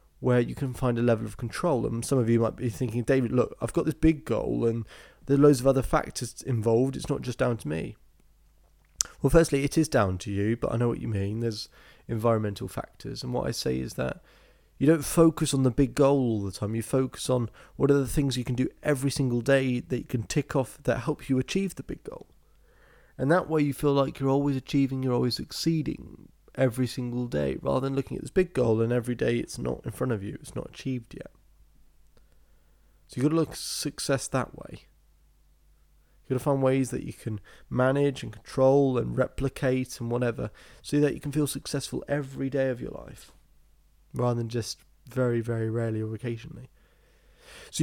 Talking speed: 215 wpm